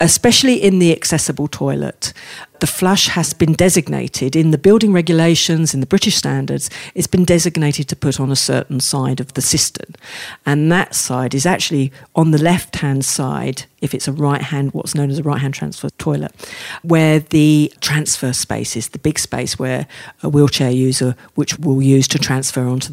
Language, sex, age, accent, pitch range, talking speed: English, female, 50-69, British, 140-170 Hz, 195 wpm